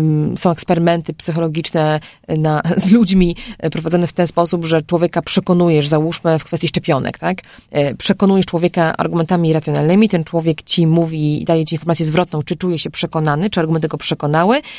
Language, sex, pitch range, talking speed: Polish, female, 160-195 Hz, 160 wpm